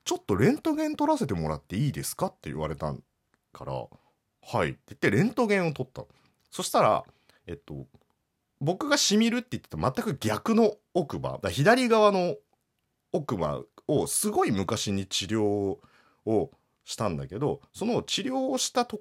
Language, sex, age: Japanese, male, 30-49